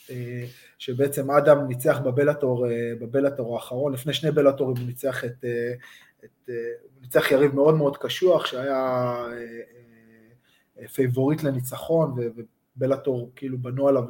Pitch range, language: 125-145 Hz, Hebrew